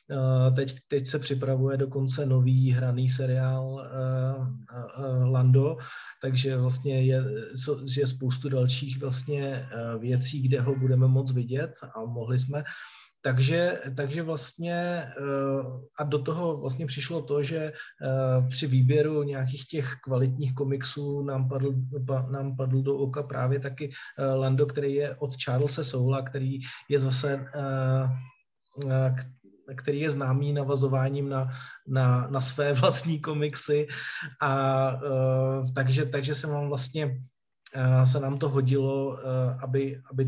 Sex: male